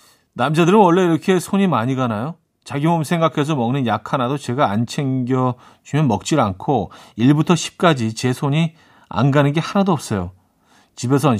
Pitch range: 115-165 Hz